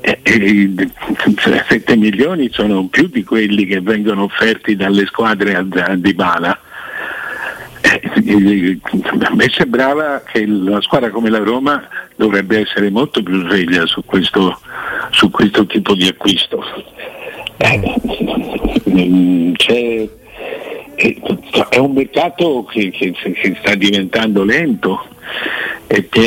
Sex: male